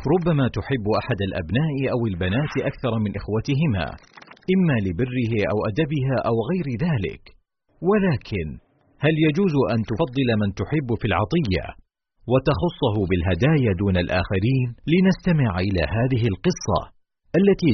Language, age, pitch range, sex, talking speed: Arabic, 40-59, 95-140 Hz, male, 115 wpm